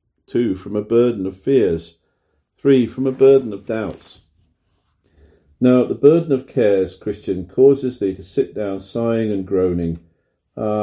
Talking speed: 150 wpm